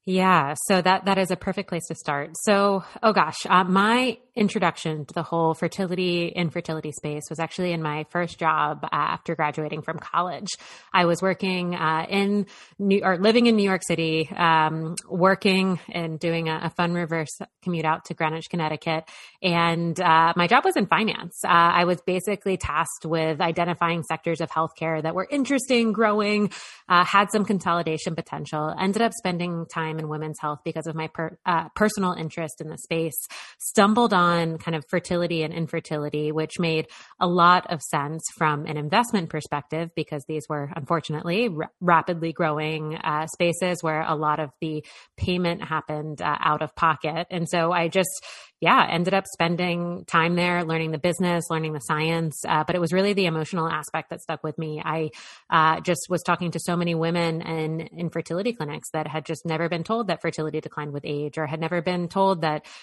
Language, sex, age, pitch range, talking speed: English, female, 20-39, 160-180 Hz, 185 wpm